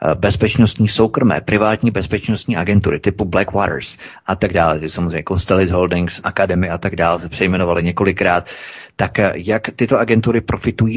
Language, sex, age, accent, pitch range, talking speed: Czech, male, 30-49, native, 95-110 Hz, 140 wpm